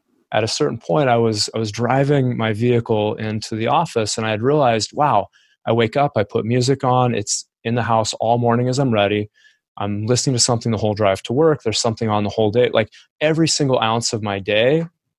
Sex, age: male, 20-39